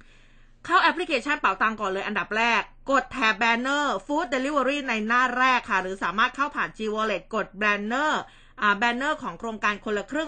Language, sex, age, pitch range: Thai, female, 20-39, 215-275 Hz